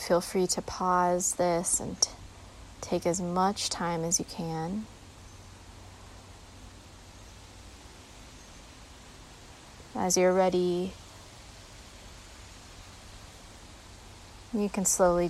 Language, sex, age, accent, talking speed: English, female, 20-39, American, 80 wpm